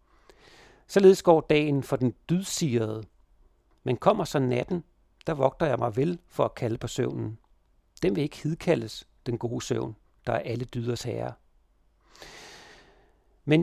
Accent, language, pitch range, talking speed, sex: native, Danish, 120-160 Hz, 145 wpm, male